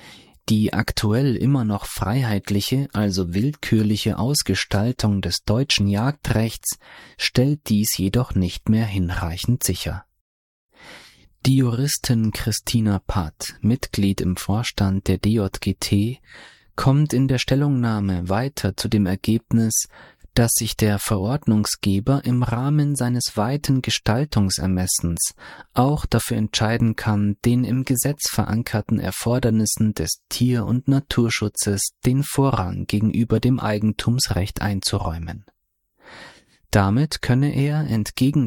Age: 30-49